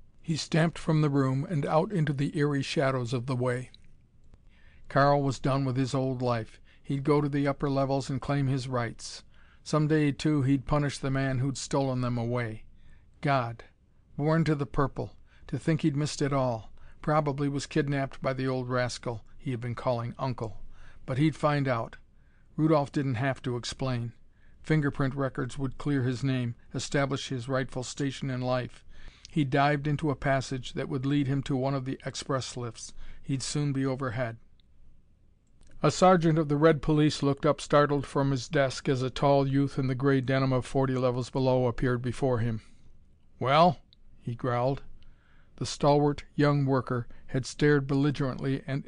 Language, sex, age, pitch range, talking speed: English, male, 50-69, 125-145 Hz, 175 wpm